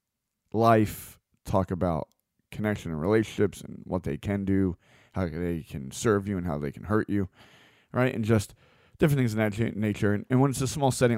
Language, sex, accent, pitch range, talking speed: English, male, American, 90-115 Hz, 200 wpm